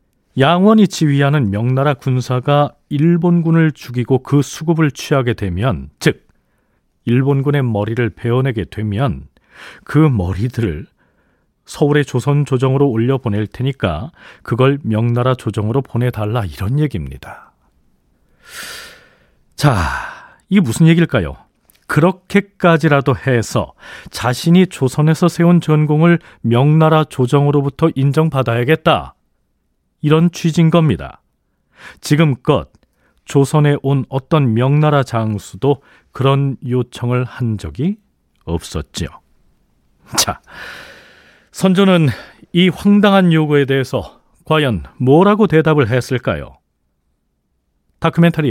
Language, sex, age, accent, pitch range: Korean, male, 40-59, native, 110-155 Hz